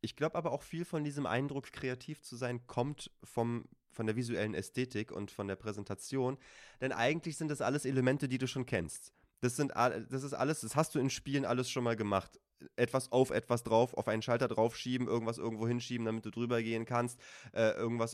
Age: 20-39